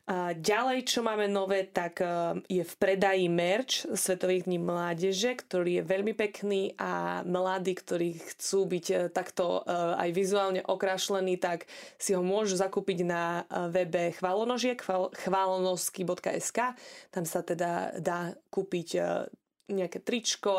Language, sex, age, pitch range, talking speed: Slovak, female, 20-39, 180-205 Hz, 115 wpm